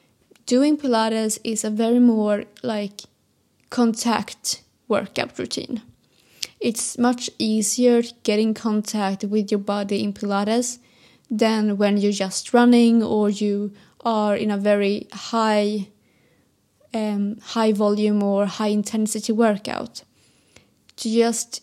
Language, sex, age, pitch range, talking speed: English, female, 20-39, 210-235 Hz, 115 wpm